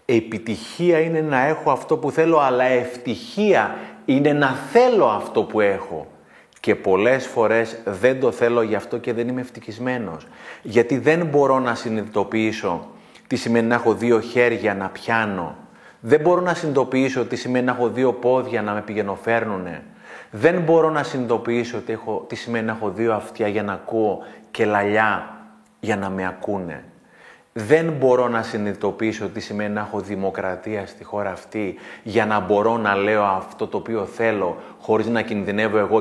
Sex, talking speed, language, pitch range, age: male, 165 wpm, Greek, 100-125 Hz, 30-49